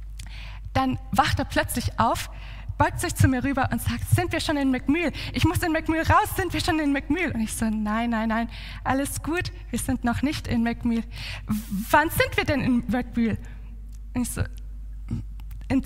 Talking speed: 195 wpm